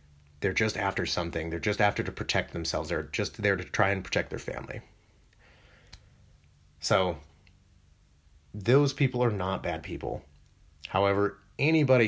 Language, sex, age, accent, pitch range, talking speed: English, male, 30-49, American, 85-115 Hz, 140 wpm